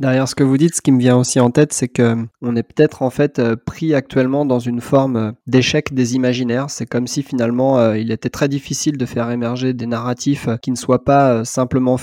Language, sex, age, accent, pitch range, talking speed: French, male, 20-39, French, 125-155 Hz, 225 wpm